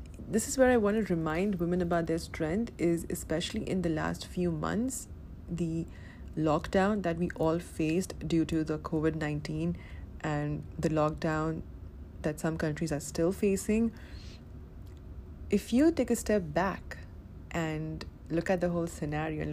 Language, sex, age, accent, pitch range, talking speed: English, female, 30-49, Indian, 145-185 Hz, 155 wpm